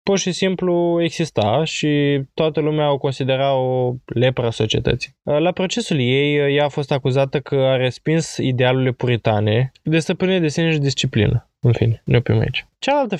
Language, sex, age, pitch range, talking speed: Romanian, male, 20-39, 125-160 Hz, 175 wpm